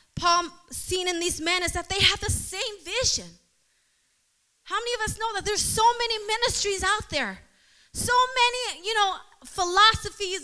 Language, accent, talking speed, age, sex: English, American, 165 wpm, 20-39, female